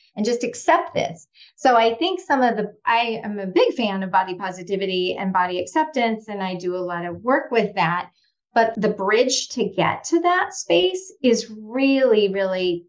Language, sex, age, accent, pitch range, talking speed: English, female, 30-49, American, 185-230 Hz, 190 wpm